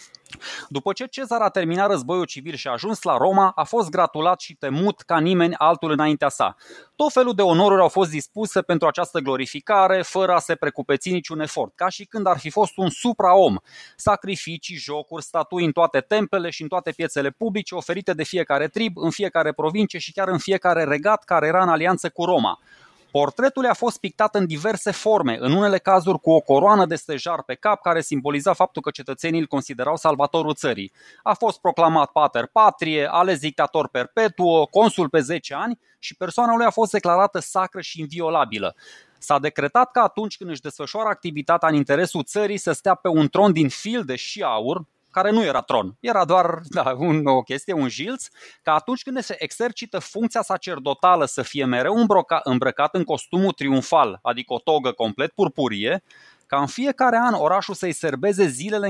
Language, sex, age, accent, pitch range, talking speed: Romanian, male, 20-39, native, 150-200 Hz, 185 wpm